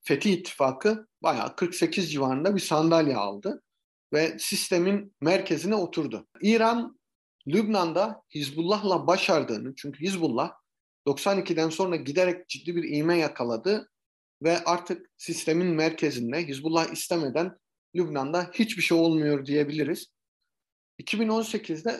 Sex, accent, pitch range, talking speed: male, native, 140-180 Hz, 100 wpm